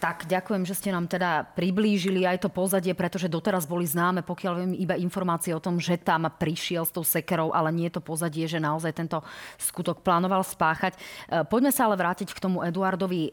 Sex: female